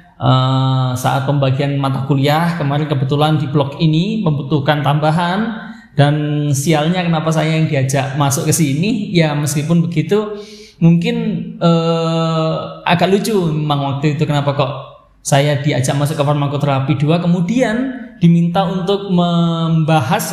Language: Indonesian